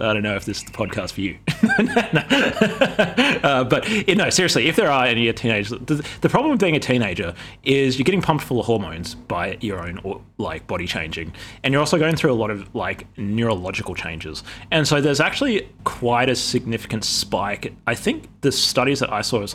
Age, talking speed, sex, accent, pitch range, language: 20-39, 215 wpm, male, Australian, 95-135 Hz, English